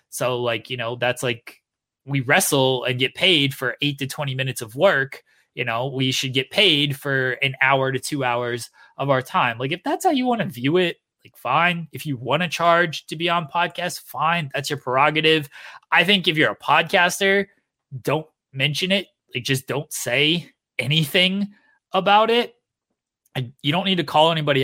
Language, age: English, 20-39